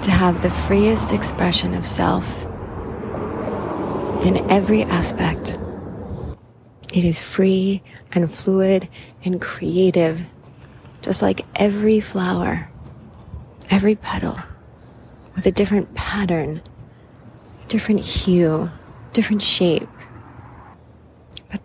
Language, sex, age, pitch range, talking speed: English, female, 30-49, 120-190 Hz, 90 wpm